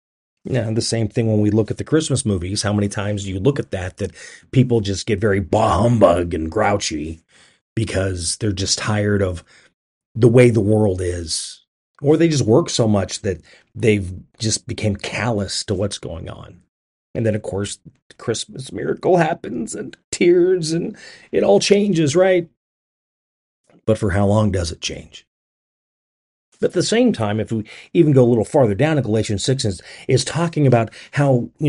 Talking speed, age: 185 wpm, 40-59